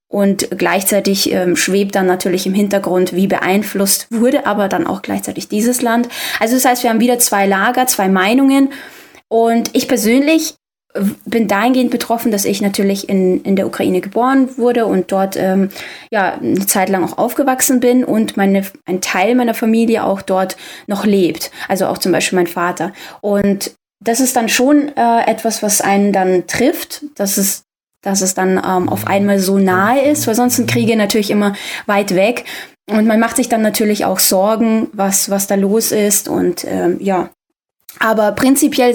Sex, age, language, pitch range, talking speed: female, 20-39, German, 195-245 Hz, 180 wpm